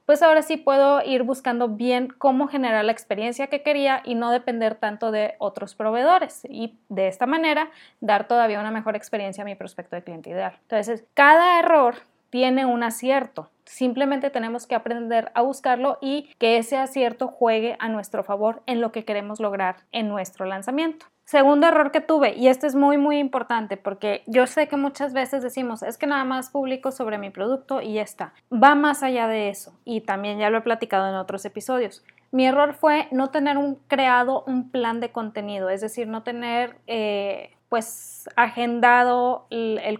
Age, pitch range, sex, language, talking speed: 20-39, 225-275 Hz, female, Spanish, 185 wpm